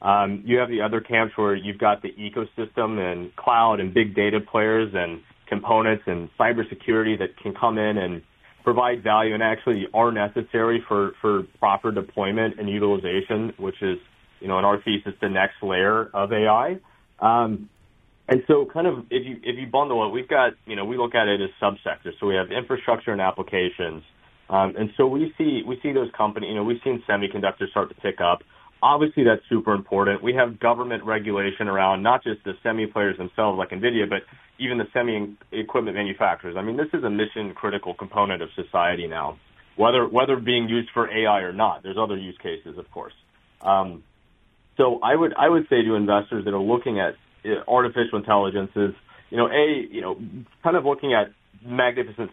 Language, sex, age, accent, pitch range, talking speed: English, male, 30-49, American, 100-115 Hz, 190 wpm